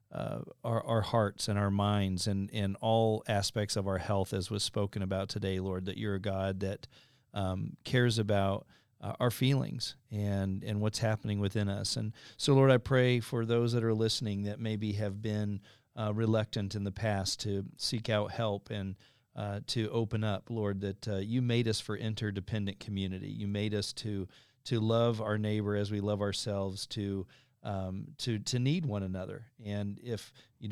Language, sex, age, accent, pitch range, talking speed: English, male, 40-59, American, 100-115 Hz, 185 wpm